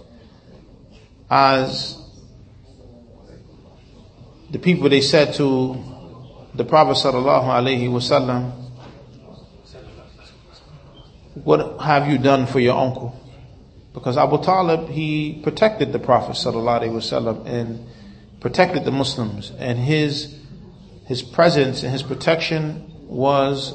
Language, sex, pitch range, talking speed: English, male, 125-150 Hz, 100 wpm